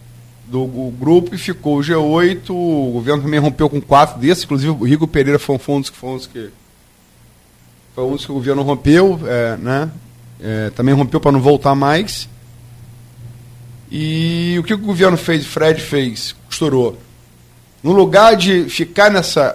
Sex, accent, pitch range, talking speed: male, Brazilian, 120-160 Hz, 170 wpm